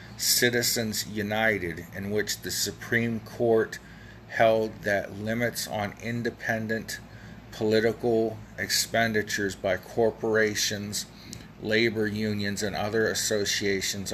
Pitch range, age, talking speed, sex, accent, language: 95-110 Hz, 40-59, 90 wpm, male, American, English